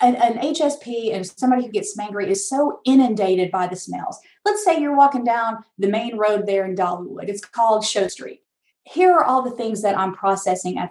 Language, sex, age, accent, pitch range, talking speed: English, female, 30-49, American, 205-275 Hz, 210 wpm